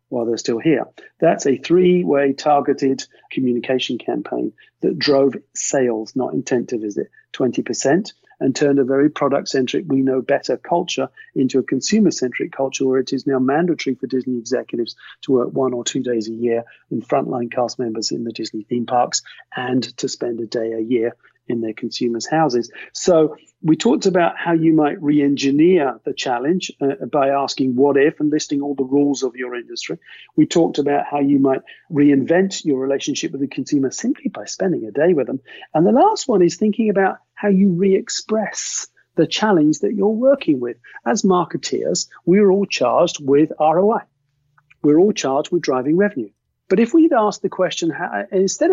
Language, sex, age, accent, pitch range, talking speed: English, male, 40-59, British, 130-180 Hz, 180 wpm